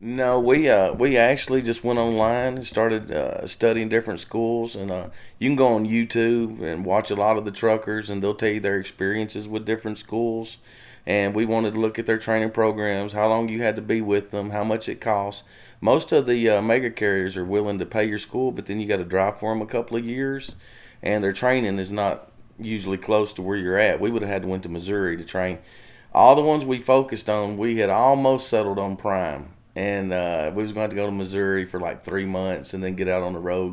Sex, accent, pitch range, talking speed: male, American, 100-115 Hz, 240 wpm